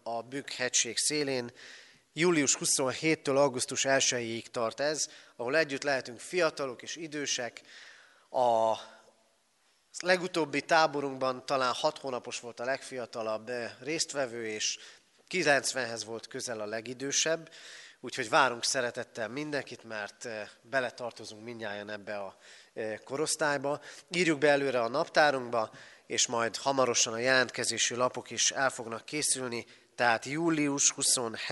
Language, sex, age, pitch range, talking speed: Hungarian, male, 30-49, 120-150 Hz, 110 wpm